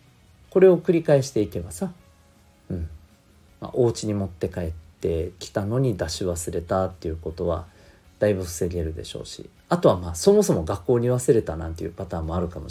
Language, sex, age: Japanese, male, 40-59